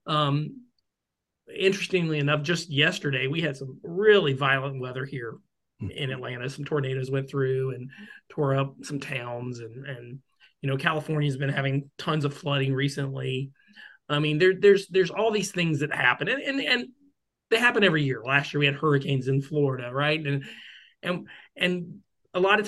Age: 30-49